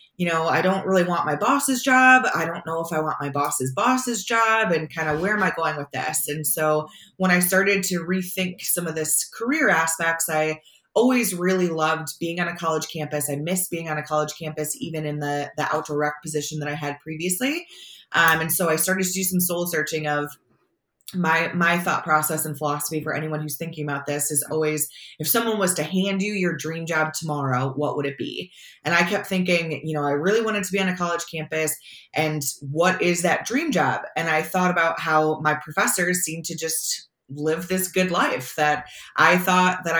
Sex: female